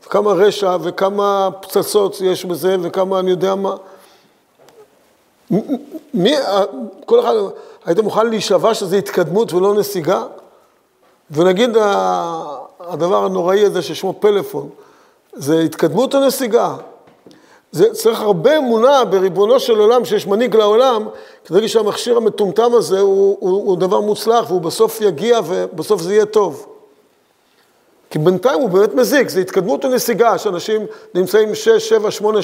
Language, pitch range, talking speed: Hebrew, 190-255 Hz, 130 wpm